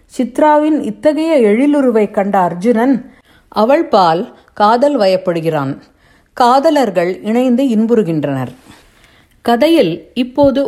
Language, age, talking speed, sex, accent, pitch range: Tamil, 50-69, 80 wpm, female, native, 200-275 Hz